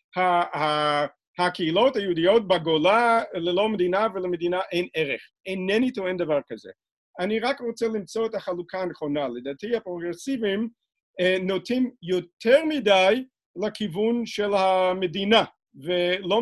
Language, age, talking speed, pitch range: Hebrew, 50-69, 100 wpm, 180-235 Hz